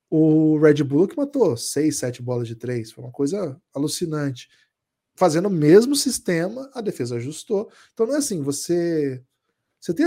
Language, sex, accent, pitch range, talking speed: Portuguese, male, Brazilian, 140-195 Hz, 165 wpm